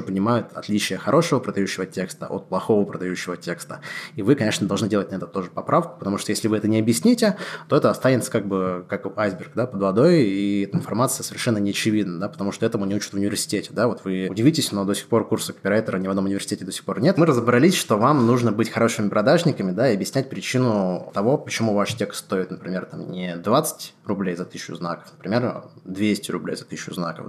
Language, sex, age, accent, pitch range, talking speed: Russian, male, 20-39, native, 95-115 Hz, 210 wpm